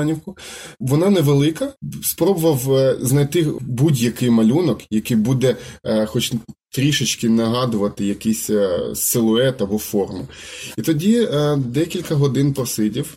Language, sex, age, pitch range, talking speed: Ukrainian, male, 20-39, 110-135 Hz, 110 wpm